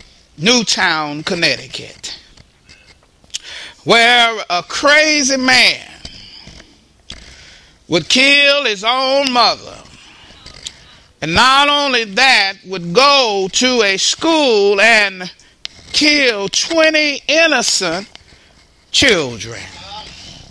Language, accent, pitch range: English, American, 200-290 Hz